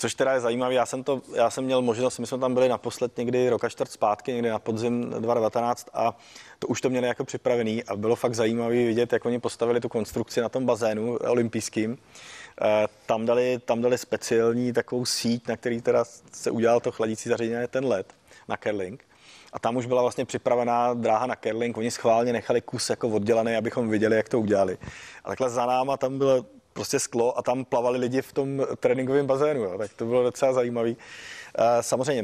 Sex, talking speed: male, 200 wpm